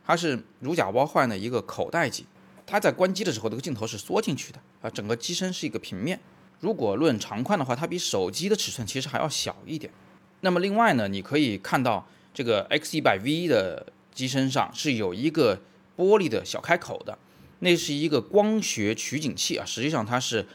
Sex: male